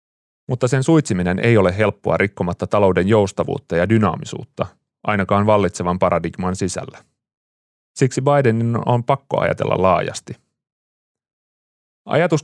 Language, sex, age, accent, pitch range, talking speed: Finnish, male, 30-49, native, 95-115 Hz, 105 wpm